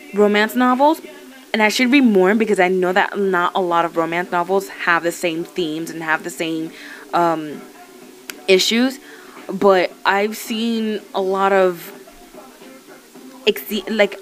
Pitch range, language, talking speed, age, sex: 190-250 Hz, English, 145 wpm, 20-39, female